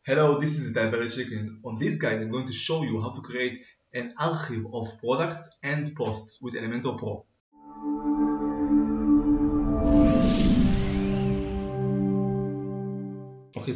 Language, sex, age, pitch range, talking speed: Hebrew, male, 20-39, 110-140 Hz, 120 wpm